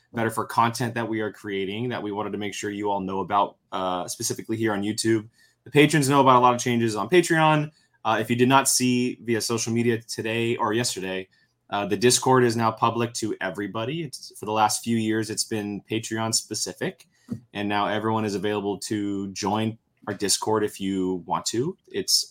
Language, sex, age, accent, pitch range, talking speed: English, male, 20-39, American, 105-125 Hz, 200 wpm